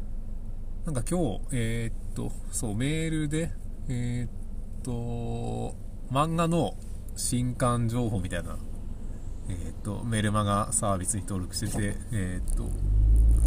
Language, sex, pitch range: Japanese, male, 90-120 Hz